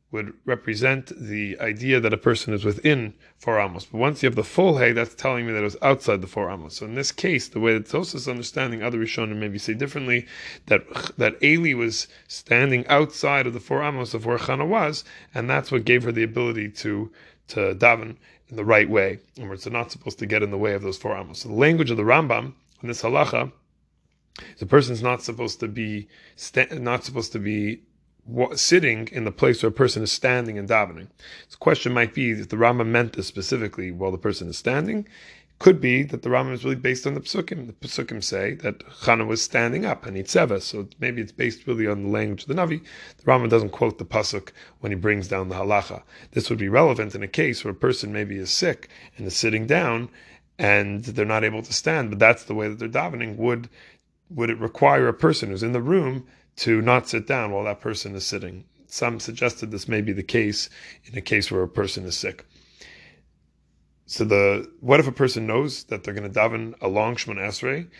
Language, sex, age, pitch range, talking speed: English, male, 30-49, 105-130 Hz, 220 wpm